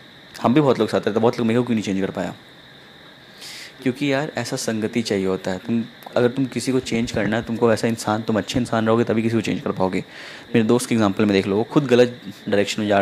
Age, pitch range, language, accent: 10-29, 105-125 Hz, Hindi, native